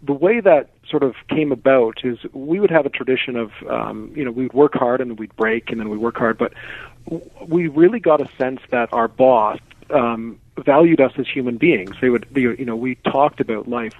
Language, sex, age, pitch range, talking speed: English, male, 40-59, 120-145 Hz, 220 wpm